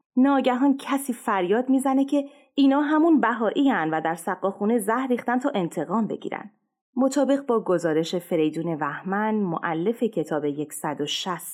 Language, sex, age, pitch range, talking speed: English, female, 30-49, 165-255 Hz, 125 wpm